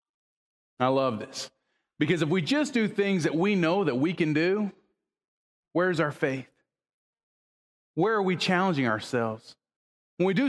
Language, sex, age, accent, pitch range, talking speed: English, male, 40-59, American, 145-215 Hz, 155 wpm